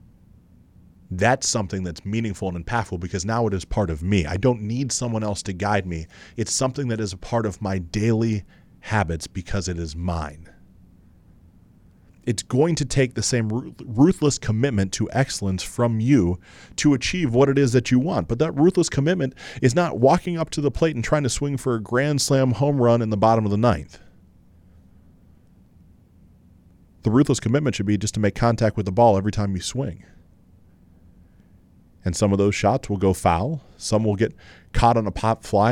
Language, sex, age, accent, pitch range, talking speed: English, male, 30-49, American, 90-125 Hz, 190 wpm